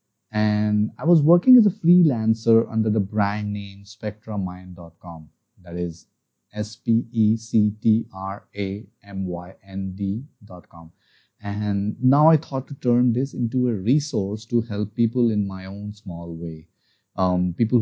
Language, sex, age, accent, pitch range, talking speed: English, male, 30-49, Indian, 95-115 Hz, 120 wpm